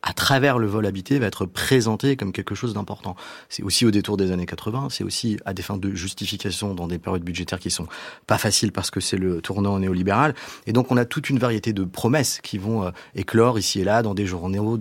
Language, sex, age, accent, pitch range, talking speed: French, male, 30-49, French, 95-115 Hz, 240 wpm